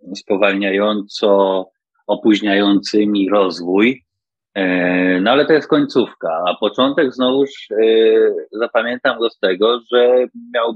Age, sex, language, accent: 30-49, male, Polish, native